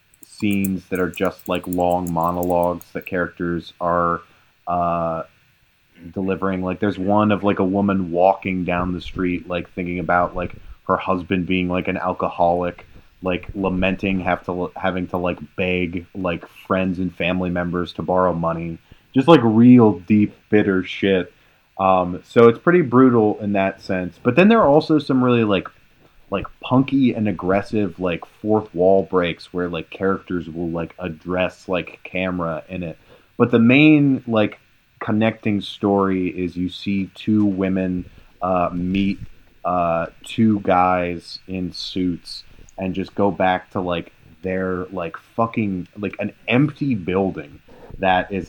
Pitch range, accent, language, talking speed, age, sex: 90-100 Hz, American, English, 150 wpm, 20-39, male